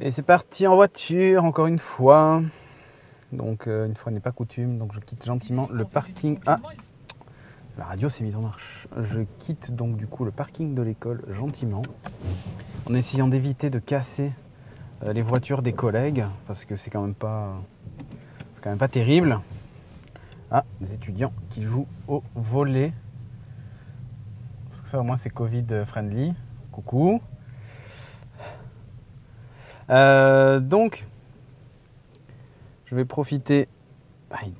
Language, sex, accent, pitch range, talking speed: French, male, French, 115-140 Hz, 140 wpm